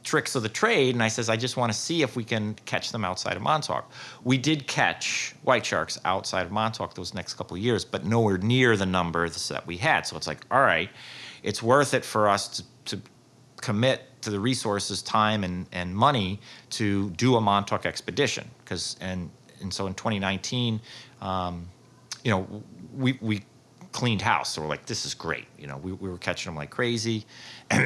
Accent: American